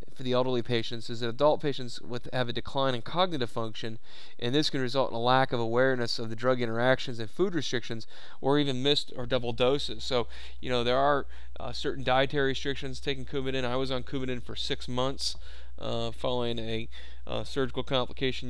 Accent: American